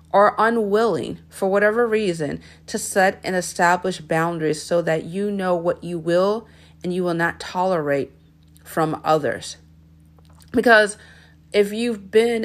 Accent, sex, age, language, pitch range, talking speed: American, female, 40-59, English, 165-195 Hz, 135 wpm